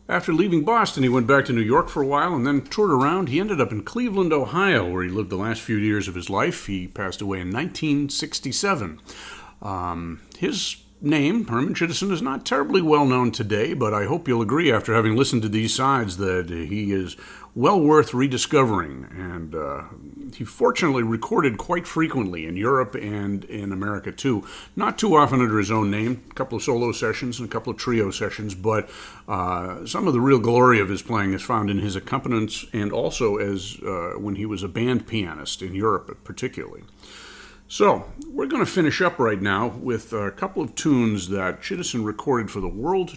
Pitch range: 100-135 Hz